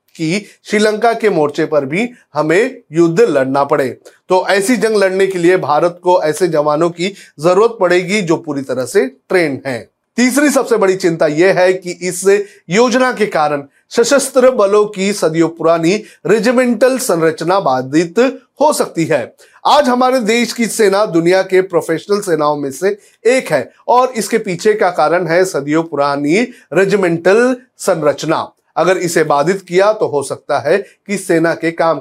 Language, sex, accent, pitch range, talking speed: Hindi, male, native, 165-230 Hz, 160 wpm